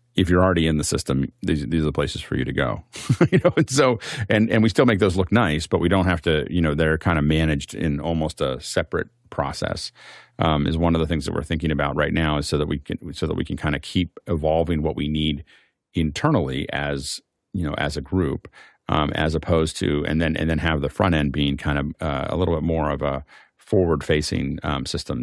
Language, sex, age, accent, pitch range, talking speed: English, male, 40-59, American, 75-95 Hz, 245 wpm